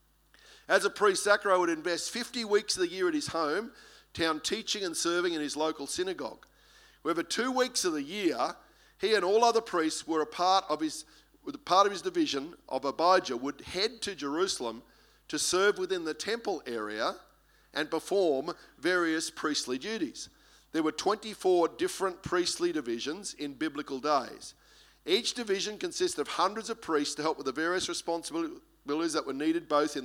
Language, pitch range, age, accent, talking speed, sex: English, 150-205 Hz, 50-69, Australian, 175 wpm, male